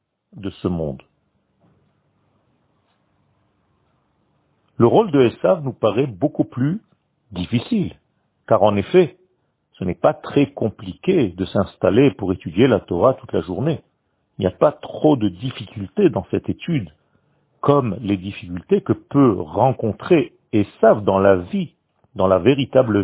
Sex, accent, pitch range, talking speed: male, French, 100-145 Hz, 135 wpm